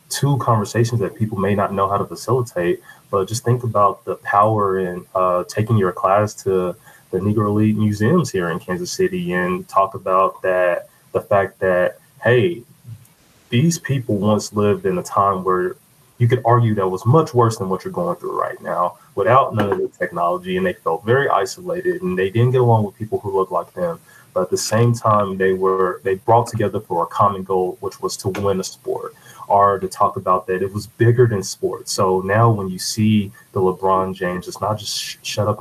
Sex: male